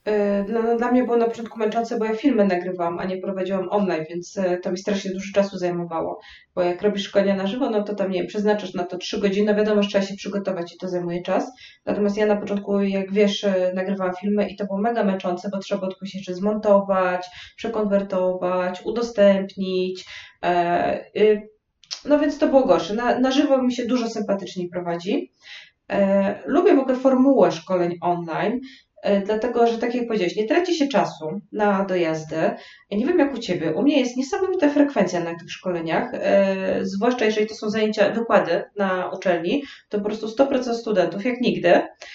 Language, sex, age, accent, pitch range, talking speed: Polish, female, 20-39, native, 185-230 Hz, 185 wpm